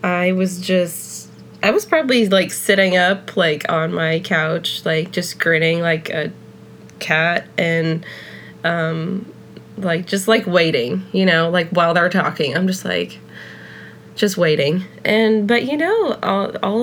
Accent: American